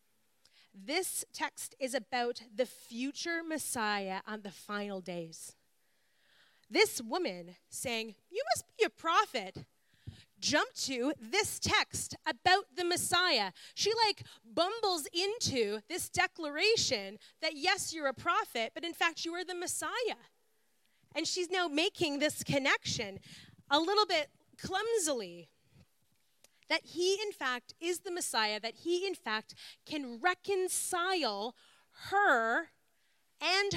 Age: 30-49